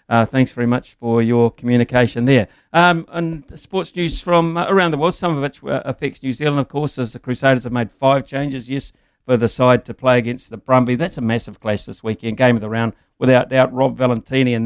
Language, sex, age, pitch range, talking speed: English, male, 60-79, 110-130 Hz, 225 wpm